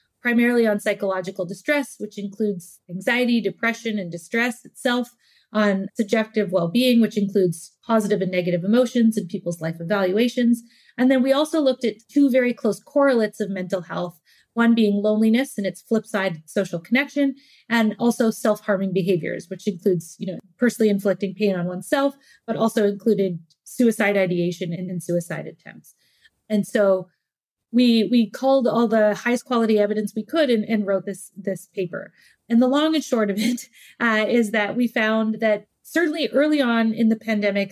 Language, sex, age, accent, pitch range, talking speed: English, female, 30-49, American, 195-235 Hz, 165 wpm